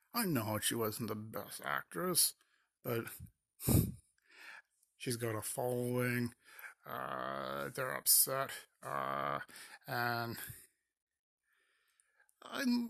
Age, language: 50-69, English